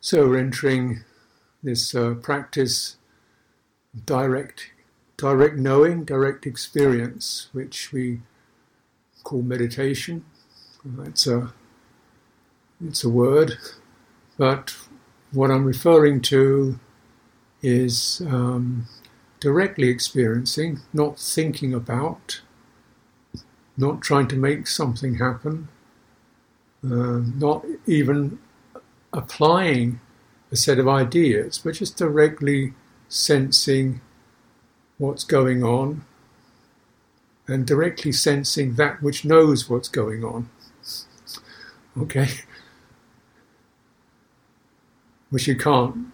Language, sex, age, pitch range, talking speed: English, male, 60-79, 120-140 Hz, 85 wpm